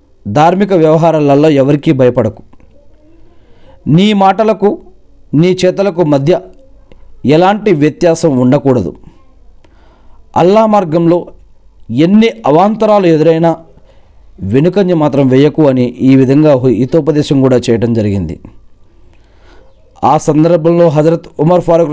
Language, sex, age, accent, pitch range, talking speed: Telugu, male, 40-59, native, 130-175 Hz, 90 wpm